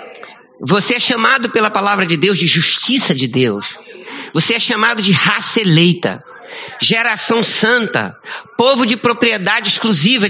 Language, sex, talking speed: Portuguese, male, 135 wpm